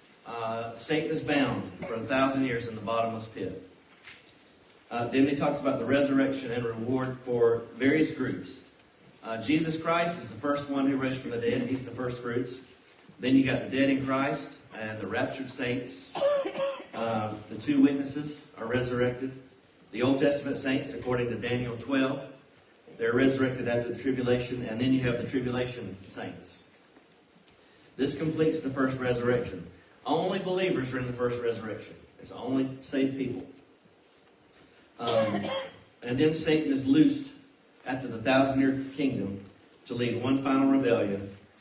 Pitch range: 115-135 Hz